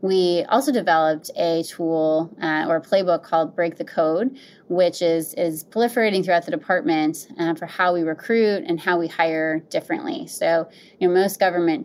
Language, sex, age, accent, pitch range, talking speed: English, female, 20-39, American, 165-200 Hz, 175 wpm